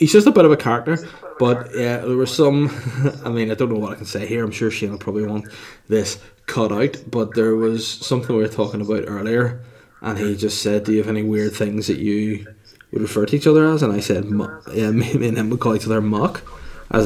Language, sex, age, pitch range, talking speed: English, male, 20-39, 105-115 Hz, 250 wpm